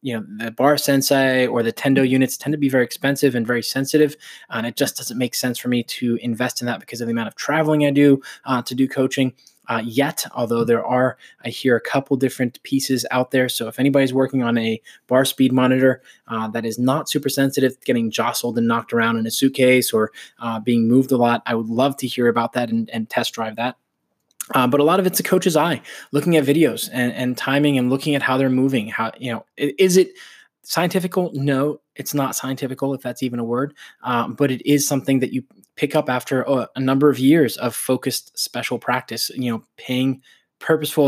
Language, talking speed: English, 225 wpm